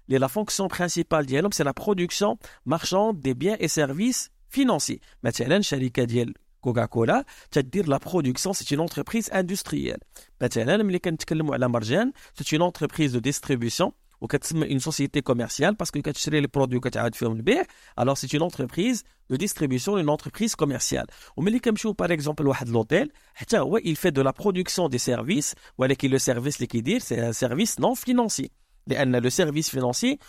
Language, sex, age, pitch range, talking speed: Arabic, male, 50-69, 130-190 Hz, 130 wpm